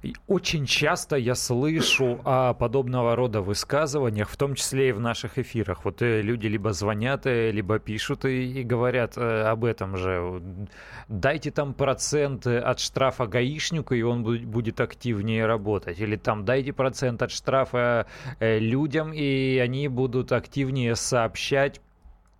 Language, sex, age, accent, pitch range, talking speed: Russian, male, 30-49, native, 115-135 Hz, 130 wpm